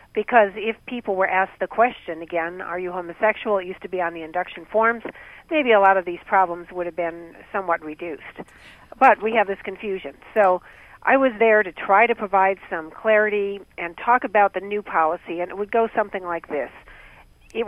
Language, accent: English, American